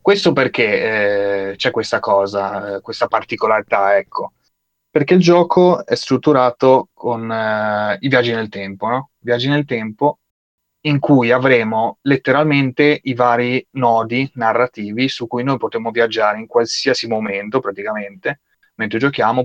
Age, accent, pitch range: 20-39, native, 105-125 Hz